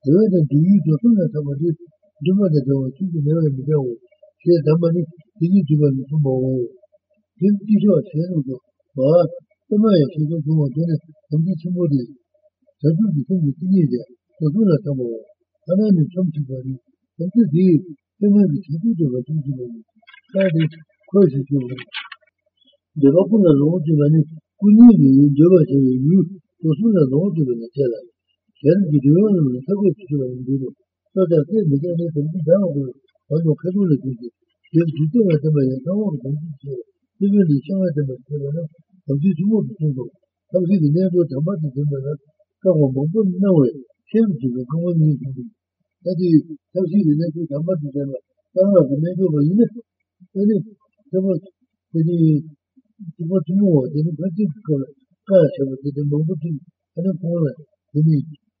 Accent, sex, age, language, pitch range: Indian, male, 60-79, Italian, 145-195 Hz